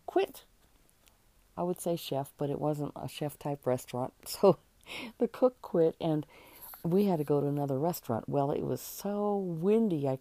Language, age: English, 50-69